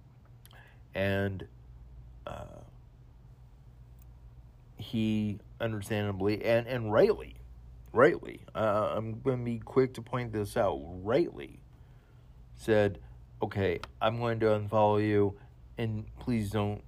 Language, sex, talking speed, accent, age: English, male, 105 wpm, American, 40-59